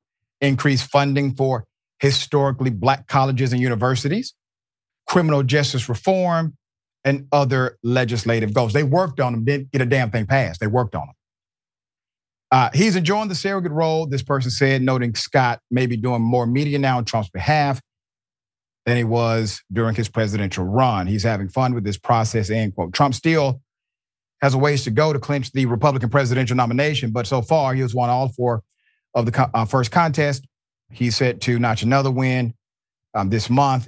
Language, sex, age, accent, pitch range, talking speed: English, male, 40-59, American, 110-140 Hz, 175 wpm